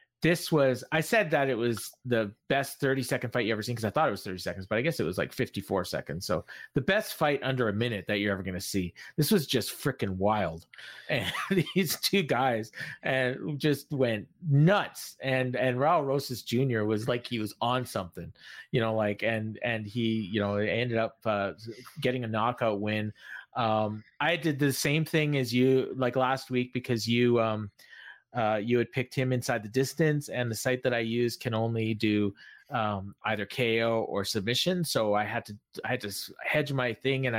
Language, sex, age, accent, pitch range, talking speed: English, male, 30-49, American, 110-130 Hz, 205 wpm